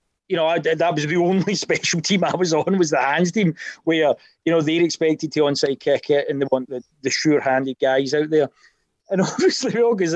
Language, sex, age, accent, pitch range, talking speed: English, male, 40-59, British, 170-270 Hz, 225 wpm